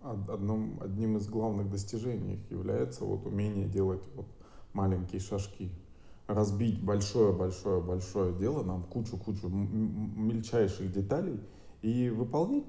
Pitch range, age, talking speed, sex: 100-130 Hz, 20-39, 85 wpm, male